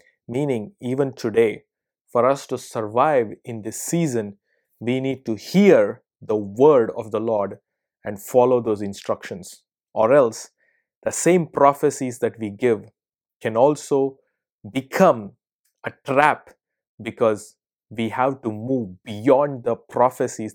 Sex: male